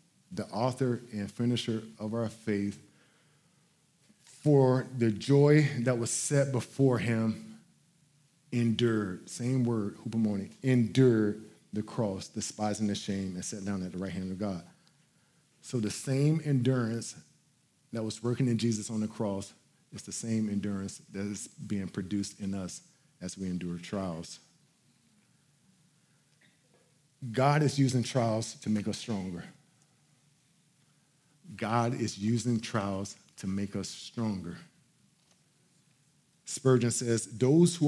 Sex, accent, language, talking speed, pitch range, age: male, American, English, 125 wpm, 110-145 Hz, 40-59